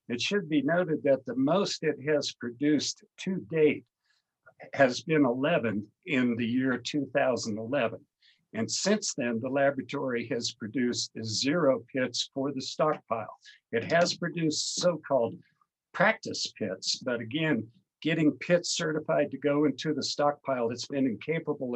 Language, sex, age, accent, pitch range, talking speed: English, male, 50-69, American, 120-150 Hz, 140 wpm